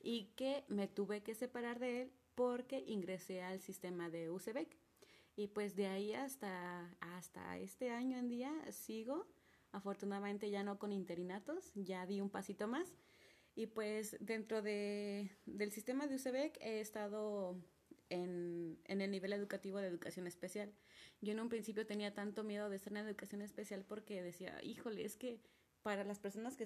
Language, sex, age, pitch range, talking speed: Spanish, female, 30-49, 190-225 Hz, 165 wpm